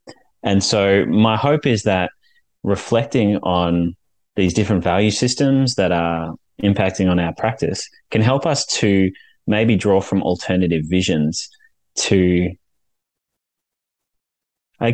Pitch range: 85-110 Hz